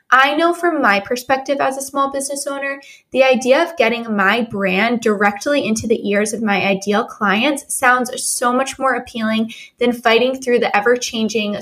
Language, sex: English, female